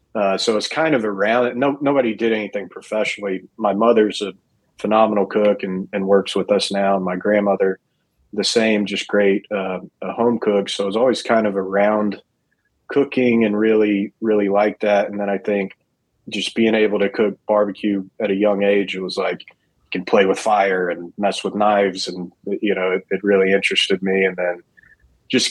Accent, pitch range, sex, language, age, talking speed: American, 95-105 Hz, male, English, 30-49, 200 wpm